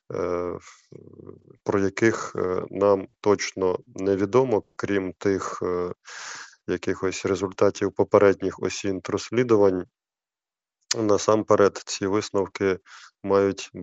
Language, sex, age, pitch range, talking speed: Ukrainian, male, 20-39, 95-100 Hz, 75 wpm